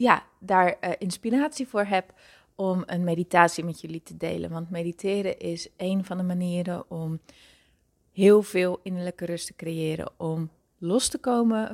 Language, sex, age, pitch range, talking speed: Dutch, female, 30-49, 170-205 Hz, 160 wpm